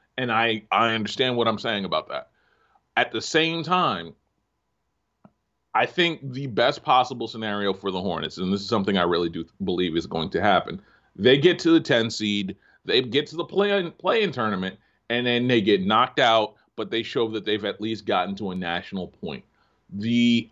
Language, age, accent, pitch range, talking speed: English, 30-49, American, 105-135 Hz, 195 wpm